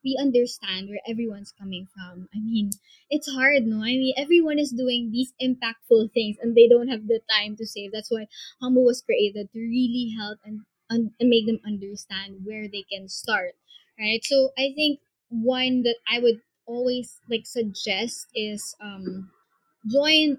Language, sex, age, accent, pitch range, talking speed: English, female, 20-39, Filipino, 205-245 Hz, 170 wpm